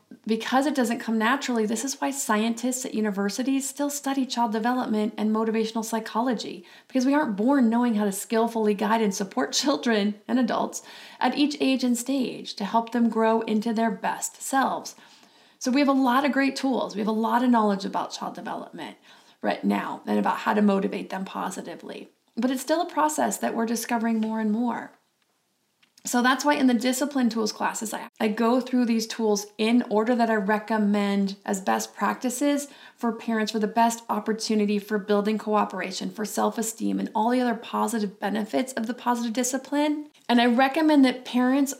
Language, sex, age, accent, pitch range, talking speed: English, female, 30-49, American, 215-250 Hz, 185 wpm